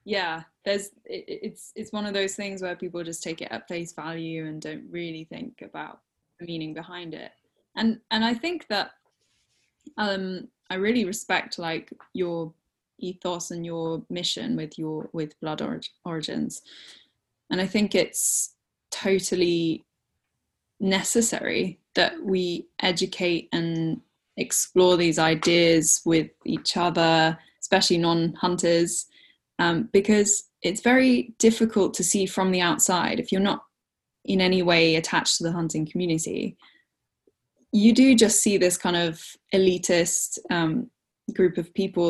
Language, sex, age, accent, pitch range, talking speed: English, female, 10-29, British, 165-205 Hz, 140 wpm